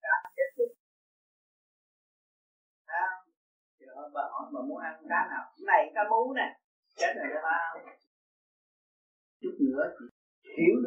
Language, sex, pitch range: Vietnamese, male, 245-375 Hz